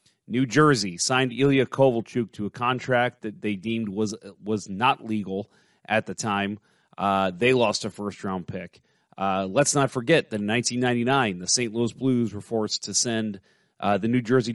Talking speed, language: 175 wpm, English